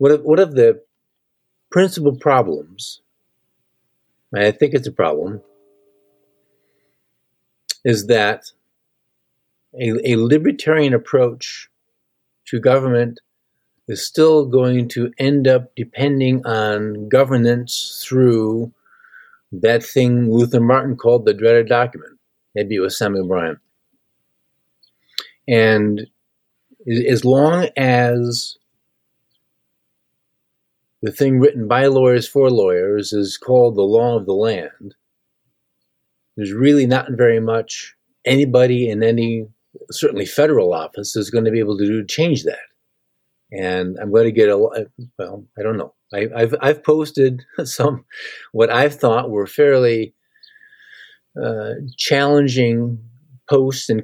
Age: 50-69